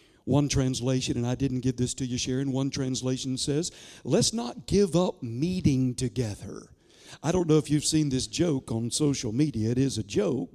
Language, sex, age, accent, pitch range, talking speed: English, male, 60-79, American, 130-185 Hz, 195 wpm